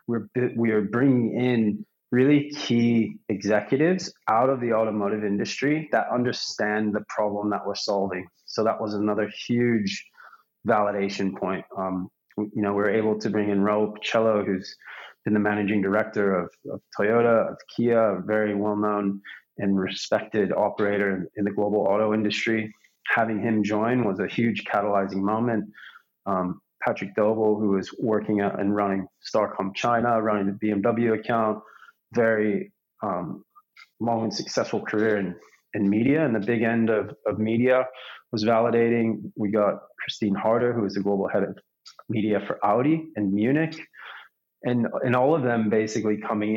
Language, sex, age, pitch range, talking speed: English, male, 20-39, 100-115 Hz, 155 wpm